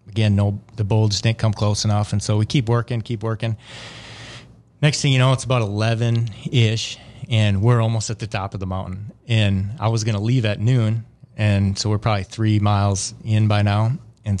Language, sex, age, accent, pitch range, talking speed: English, male, 30-49, American, 105-120 Hz, 205 wpm